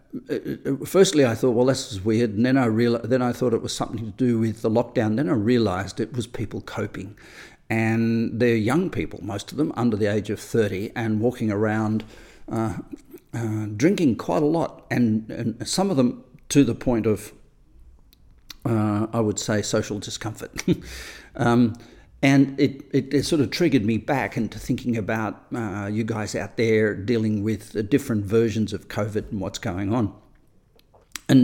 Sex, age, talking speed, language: male, 50-69, 180 wpm, English